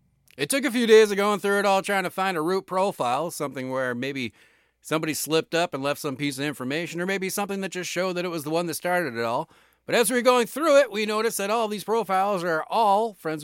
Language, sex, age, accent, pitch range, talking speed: English, male, 40-59, American, 145-200 Hz, 260 wpm